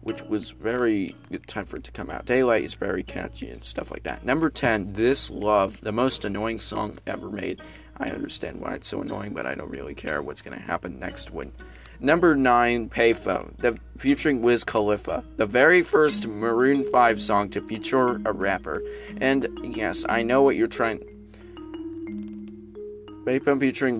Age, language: 20-39, English